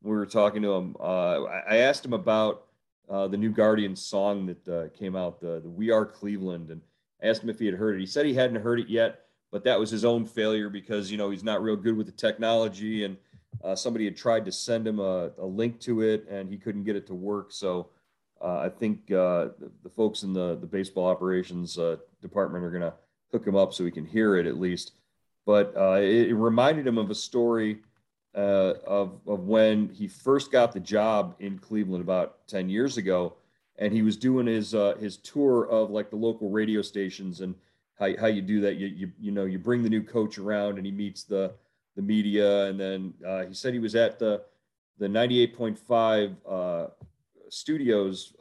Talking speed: 215 wpm